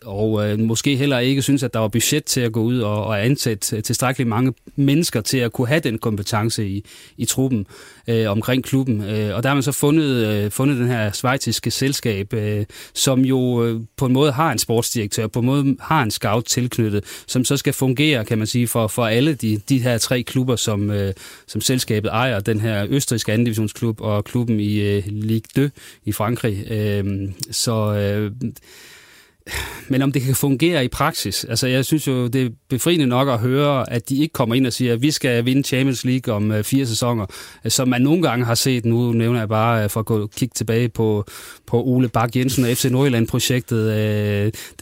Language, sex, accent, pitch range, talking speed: Danish, male, native, 110-130 Hz, 210 wpm